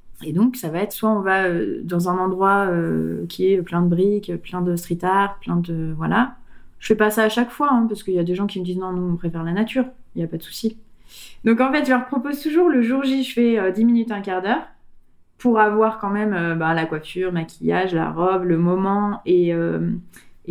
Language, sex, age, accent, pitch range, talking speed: French, female, 20-39, French, 180-240 Hz, 255 wpm